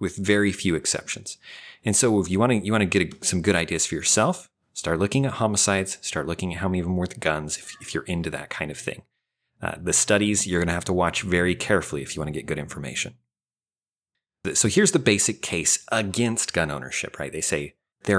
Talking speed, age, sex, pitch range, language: 230 wpm, 30-49, male, 85-115 Hz, English